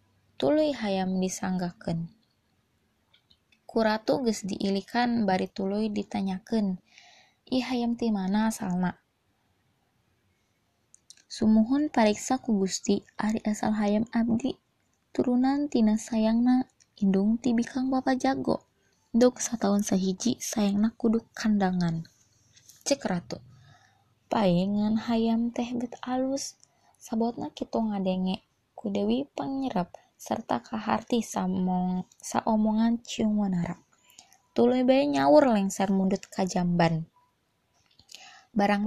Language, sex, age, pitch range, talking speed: Malay, female, 20-39, 185-240 Hz, 95 wpm